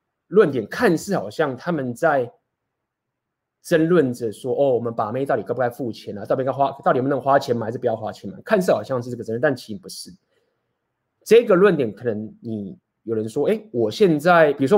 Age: 20-39